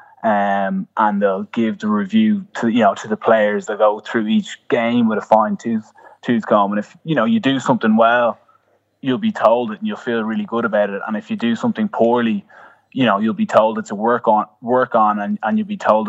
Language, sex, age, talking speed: English, male, 20-39, 245 wpm